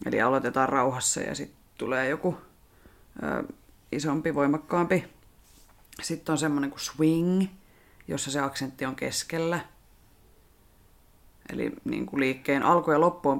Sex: female